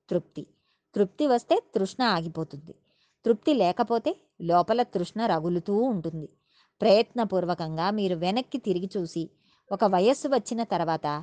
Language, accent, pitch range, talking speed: Telugu, native, 180-245 Hz, 100 wpm